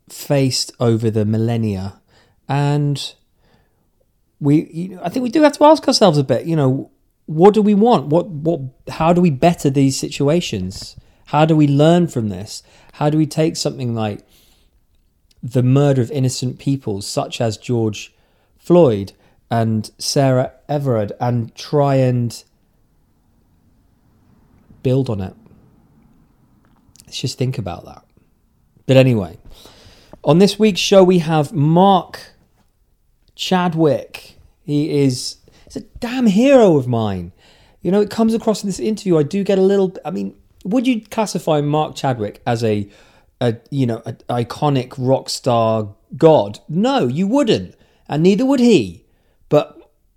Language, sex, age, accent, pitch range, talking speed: English, male, 30-49, British, 115-175 Hz, 145 wpm